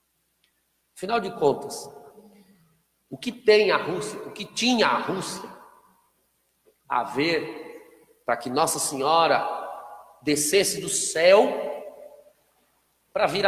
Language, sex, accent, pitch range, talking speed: Portuguese, male, Brazilian, 180-245 Hz, 105 wpm